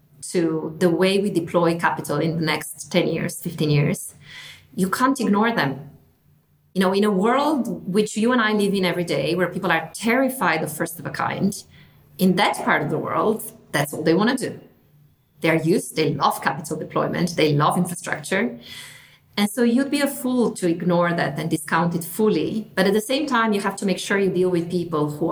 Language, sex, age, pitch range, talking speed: English, female, 30-49, 160-205 Hz, 210 wpm